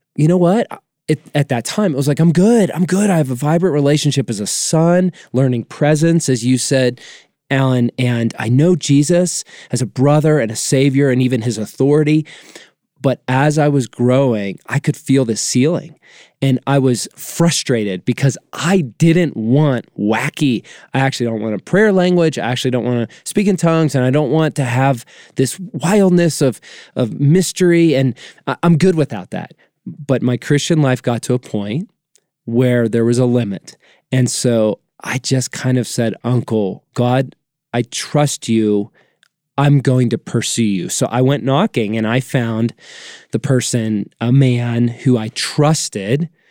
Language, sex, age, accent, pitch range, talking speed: English, male, 20-39, American, 120-150 Hz, 175 wpm